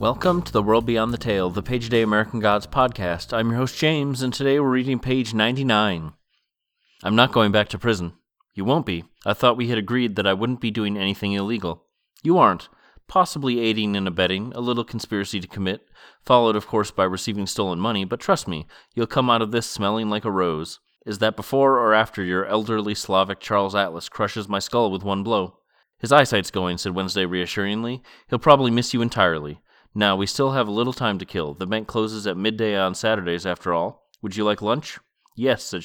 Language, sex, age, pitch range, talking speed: English, male, 30-49, 100-120 Hz, 210 wpm